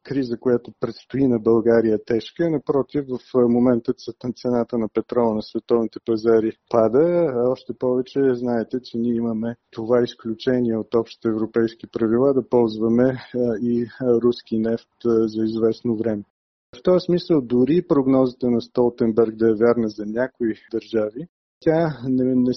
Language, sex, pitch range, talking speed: Bulgarian, male, 110-130 Hz, 135 wpm